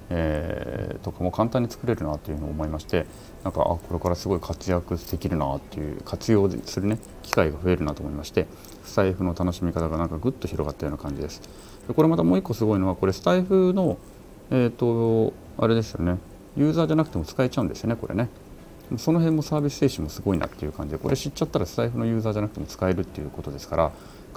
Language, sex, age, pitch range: Japanese, male, 40-59, 80-105 Hz